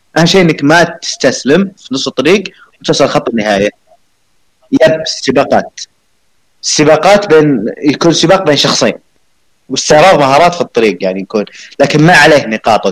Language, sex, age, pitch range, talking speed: Arabic, male, 30-49, 110-150 Hz, 140 wpm